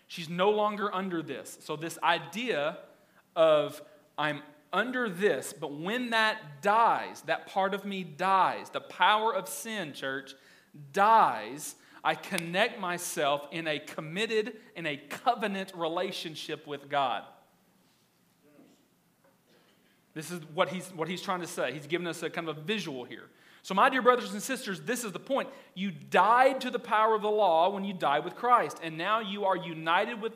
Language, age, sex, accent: English, 40-59, male, American